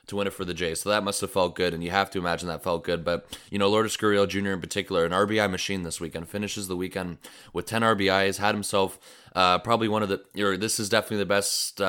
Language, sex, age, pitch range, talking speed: English, male, 20-39, 90-105 Hz, 260 wpm